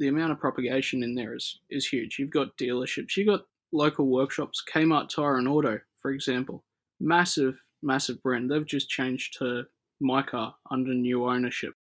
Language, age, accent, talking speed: English, 20-39, Australian, 165 wpm